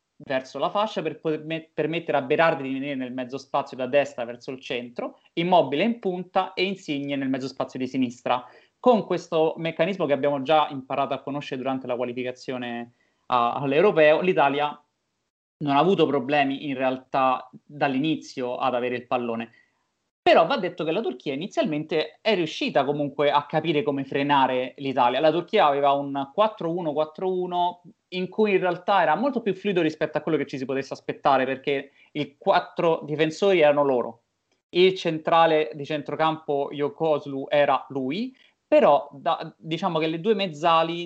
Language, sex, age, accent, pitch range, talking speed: Italian, male, 30-49, native, 140-175 Hz, 160 wpm